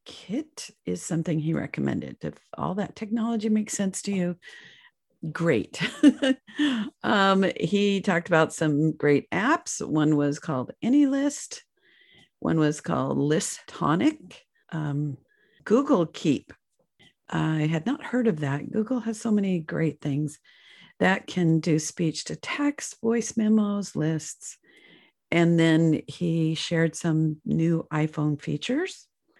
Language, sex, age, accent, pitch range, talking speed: English, female, 50-69, American, 160-225 Hz, 120 wpm